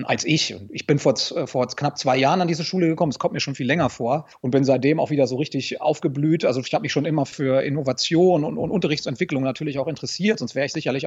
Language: German